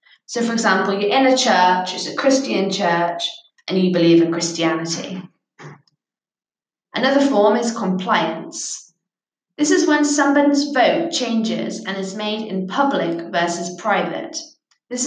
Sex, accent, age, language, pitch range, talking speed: female, British, 20-39, English, 180-260 Hz, 135 wpm